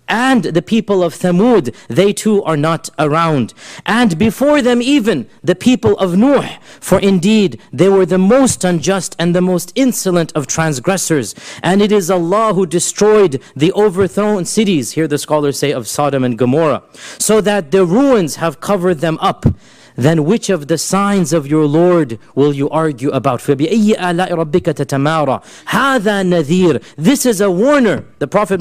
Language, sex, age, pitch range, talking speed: English, male, 40-59, 160-210 Hz, 155 wpm